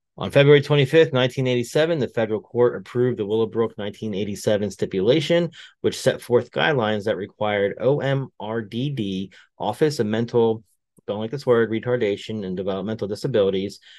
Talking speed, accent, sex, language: 130 wpm, American, male, English